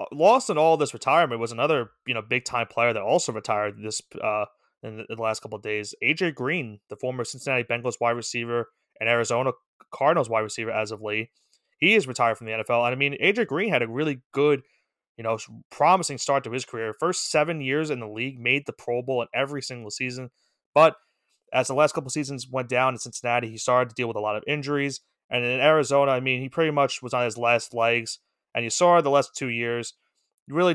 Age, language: 30-49, English